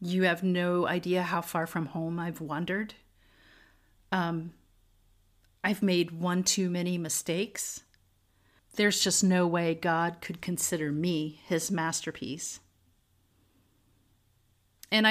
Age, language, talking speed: 40-59, English, 110 wpm